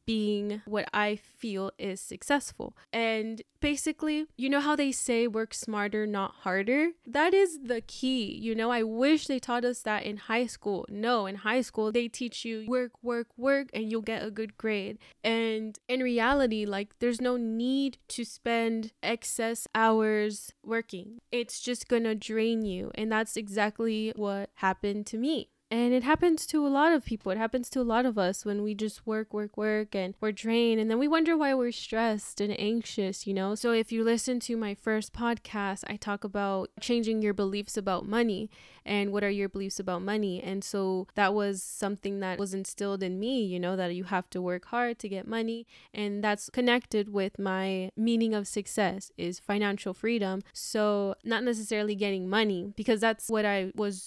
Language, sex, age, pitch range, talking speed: English, female, 10-29, 205-235 Hz, 190 wpm